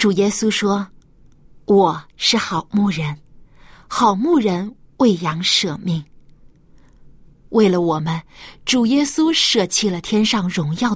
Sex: female